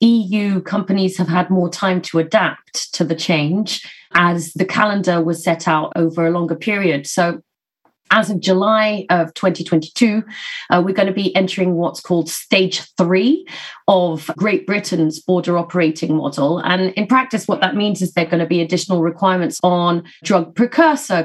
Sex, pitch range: female, 175-220 Hz